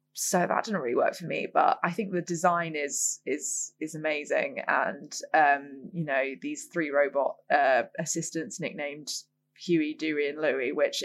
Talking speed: 170 wpm